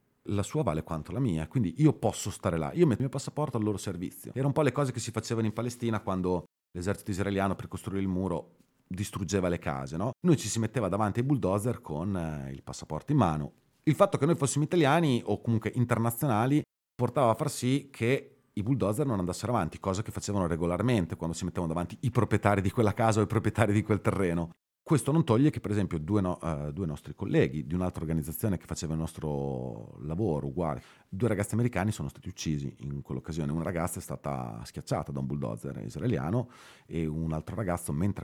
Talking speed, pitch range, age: 205 wpm, 80-120 Hz, 40-59